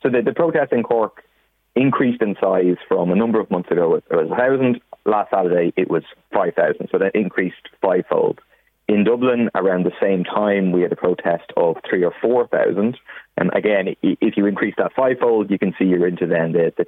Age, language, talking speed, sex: 30-49, English, 200 wpm, male